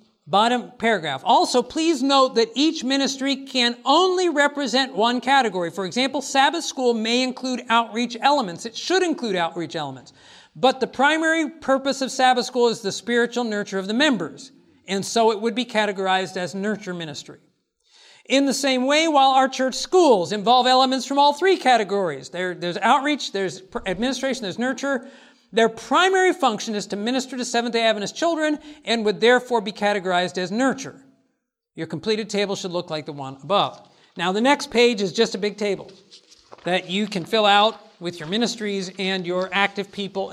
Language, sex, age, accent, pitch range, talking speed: English, male, 50-69, American, 200-270 Hz, 175 wpm